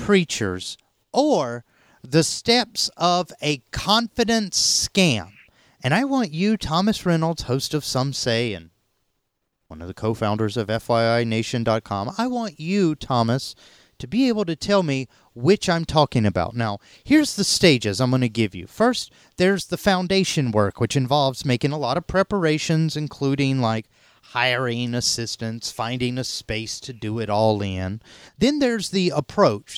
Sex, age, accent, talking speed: male, 30-49, American, 155 wpm